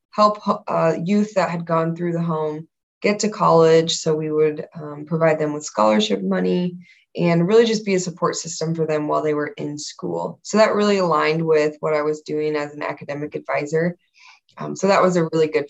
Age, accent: 20-39, American